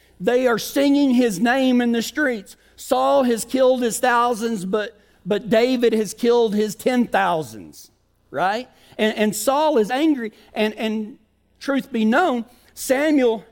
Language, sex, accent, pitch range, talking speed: English, male, American, 155-235 Hz, 145 wpm